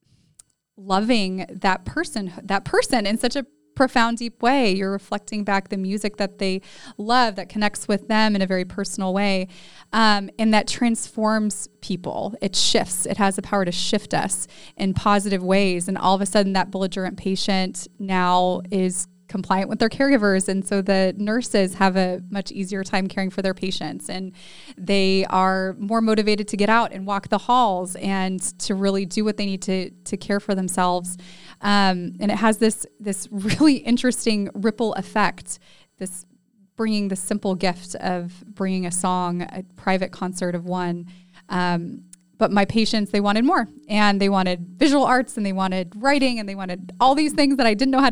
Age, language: 20-39, English